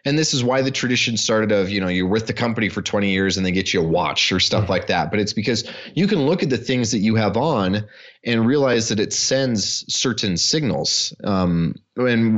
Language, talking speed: English, 240 wpm